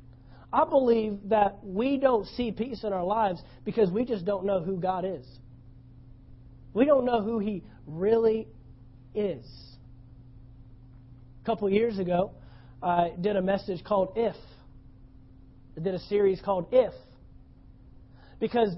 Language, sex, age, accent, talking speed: English, male, 40-59, American, 135 wpm